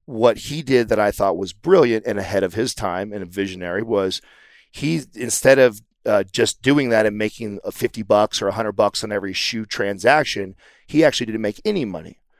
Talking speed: 210 wpm